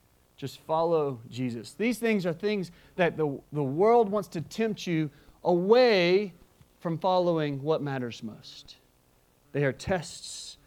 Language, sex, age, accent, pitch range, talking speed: English, male, 40-59, American, 135-185 Hz, 135 wpm